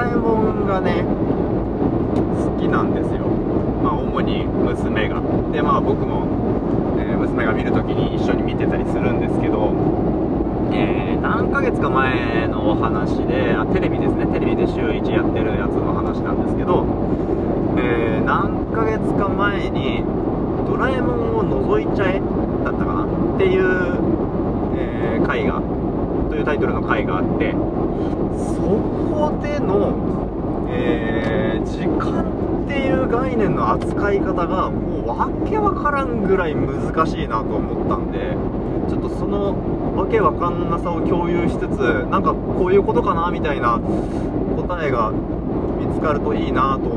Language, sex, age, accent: Japanese, male, 20-39, native